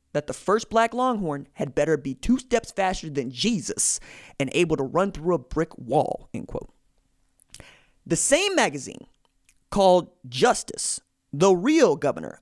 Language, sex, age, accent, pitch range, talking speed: English, male, 30-49, American, 135-190 Hz, 150 wpm